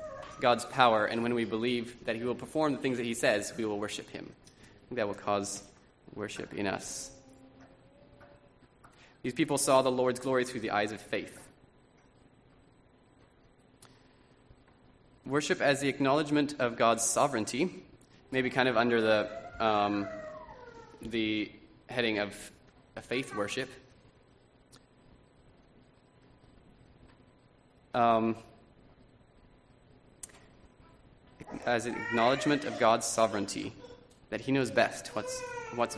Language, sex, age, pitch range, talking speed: English, male, 20-39, 110-130 Hz, 115 wpm